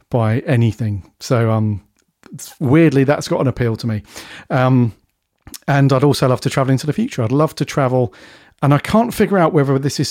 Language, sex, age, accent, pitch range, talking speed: English, male, 40-59, British, 115-140 Hz, 195 wpm